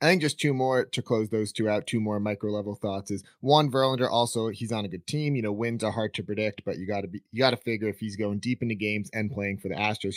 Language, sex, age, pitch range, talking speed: English, male, 30-49, 105-125 Hz, 290 wpm